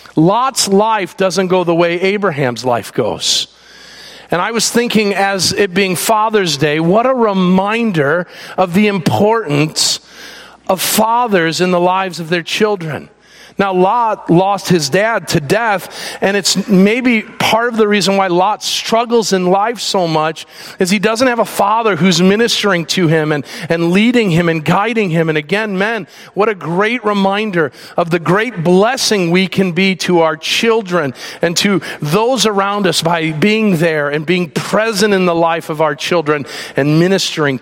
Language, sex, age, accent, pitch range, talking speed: English, male, 40-59, American, 150-200 Hz, 170 wpm